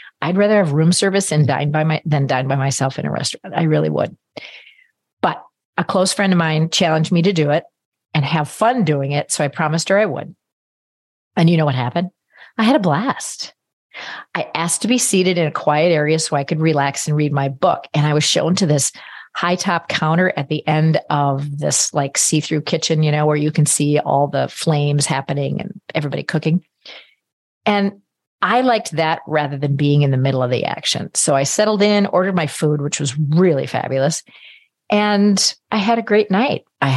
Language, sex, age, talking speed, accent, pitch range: English, female, 40-59, 205 wpm, American, 145-185 Hz